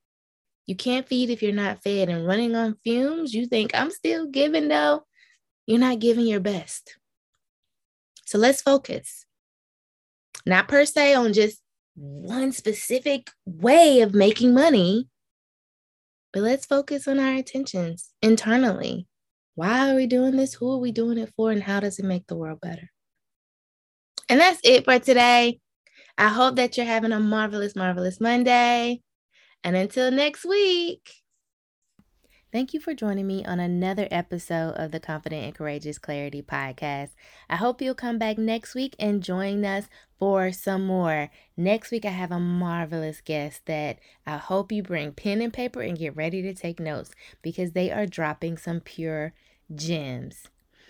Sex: female